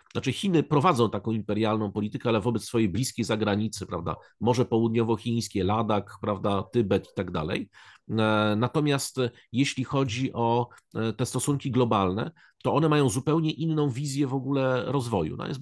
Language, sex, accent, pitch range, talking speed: Polish, male, native, 105-130 Hz, 145 wpm